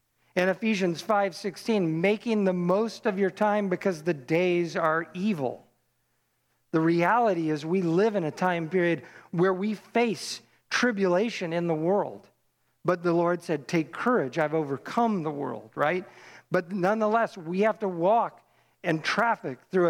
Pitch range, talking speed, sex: 165-210 Hz, 150 wpm, male